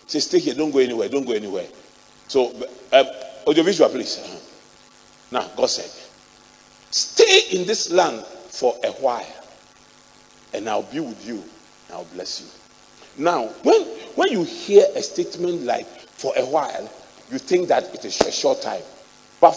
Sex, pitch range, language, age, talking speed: male, 195-315 Hz, English, 40-59, 165 wpm